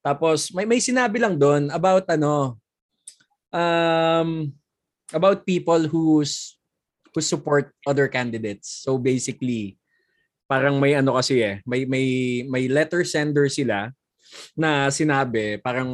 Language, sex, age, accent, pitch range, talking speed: Filipino, male, 20-39, native, 125-165 Hz, 120 wpm